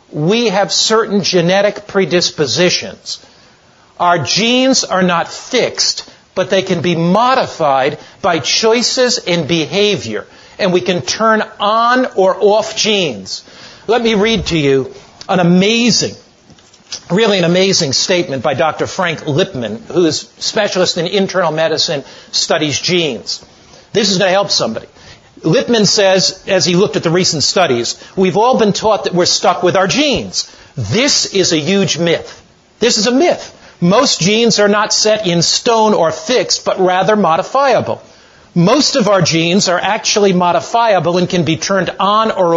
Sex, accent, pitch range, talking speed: male, American, 170-215 Hz, 155 wpm